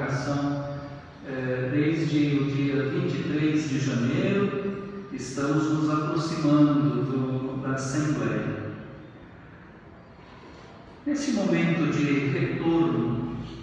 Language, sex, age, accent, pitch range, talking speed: Portuguese, male, 50-69, Brazilian, 145-205 Hz, 70 wpm